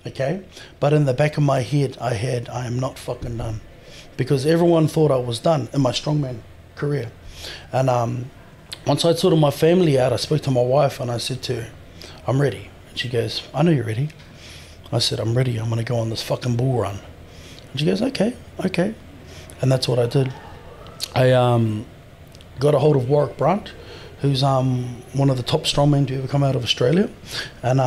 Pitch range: 120-150 Hz